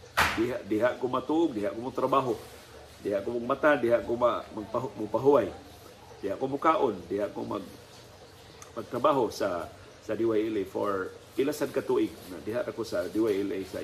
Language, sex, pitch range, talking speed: Filipino, male, 125-155 Hz, 145 wpm